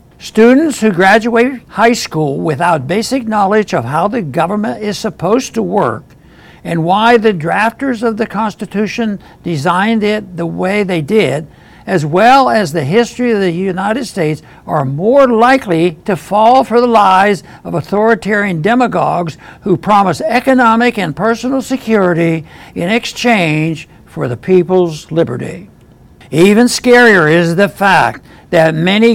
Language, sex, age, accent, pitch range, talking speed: English, male, 60-79, American, 175-230 Hz, 140 wpm